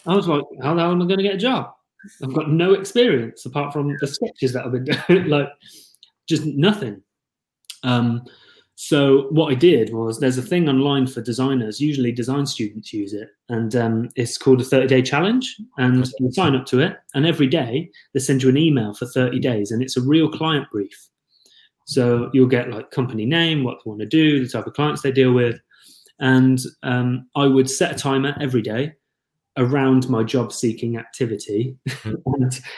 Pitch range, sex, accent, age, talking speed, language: 125-150 Hz, male, British, 30-49, 200 wpm, English